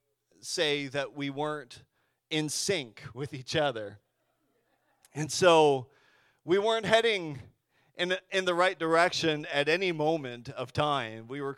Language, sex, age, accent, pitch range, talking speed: English, male, 40-59, American, 130-165 Hz, 140 wpm